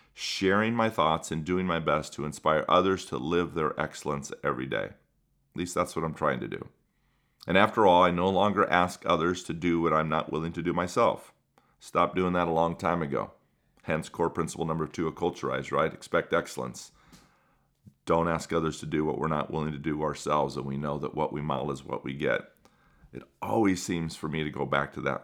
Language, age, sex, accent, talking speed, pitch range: English, 40-59, male, American, 215 wpm, 75-90 Hz